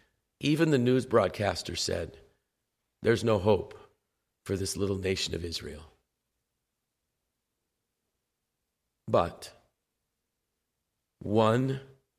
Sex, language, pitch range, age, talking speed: male, English, 100-125 Hz, 50-69, 80 wpm